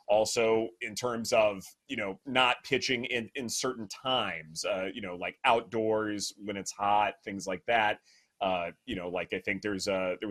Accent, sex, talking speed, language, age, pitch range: American, male, 185 wpm, English, 30-49, 95-120 Hz